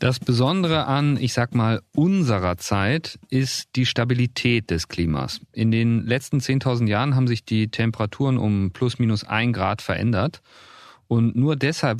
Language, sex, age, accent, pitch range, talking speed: German, male, 40-59, German, 105-135 Hz, 155 wpm